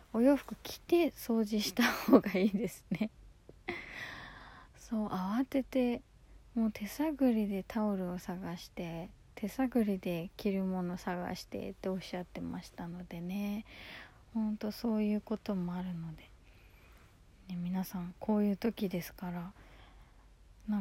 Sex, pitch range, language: female, 185-220 Hz, Japanese